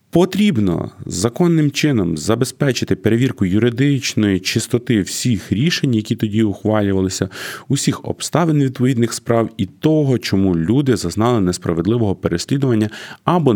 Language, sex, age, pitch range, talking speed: Ukrainian, male, 30-49, 90-120 Hz, 105 wpm